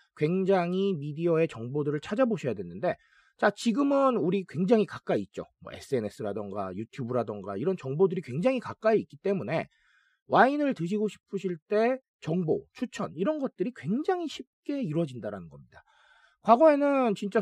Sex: male